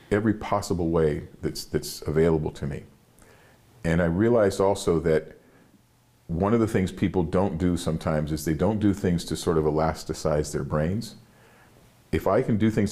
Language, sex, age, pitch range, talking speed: English, male, 40-59, 80-95 Hz, 170 wpm